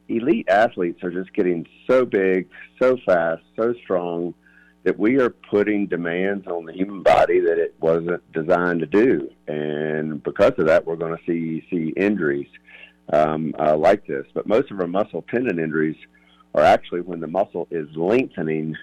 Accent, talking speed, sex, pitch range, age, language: American, 170 wpm, male, 75-95 Hz, 50-69, English